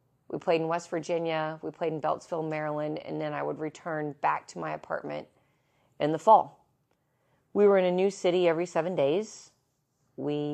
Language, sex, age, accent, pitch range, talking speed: English, female, 30-49, American, 140-175 Hz, 180 wpm